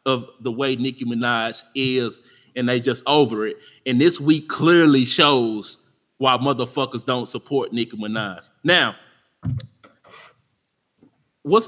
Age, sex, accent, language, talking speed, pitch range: 20-39, male, American, English, 125 wpm, 130-170 Hz